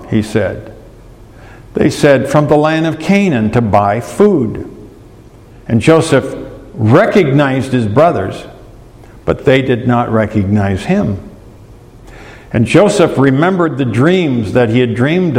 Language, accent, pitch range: English, American, 115-180 Hz